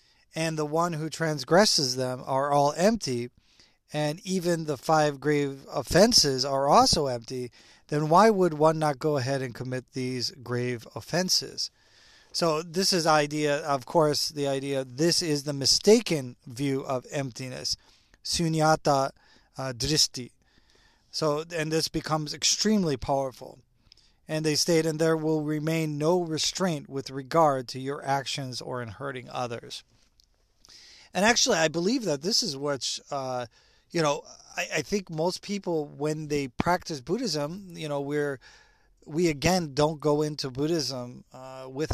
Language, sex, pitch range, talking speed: English, male, 135-160 Hz, 145 wpm